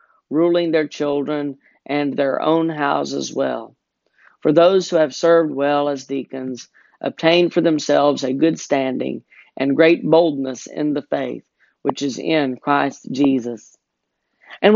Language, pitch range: English, 135-160 Hz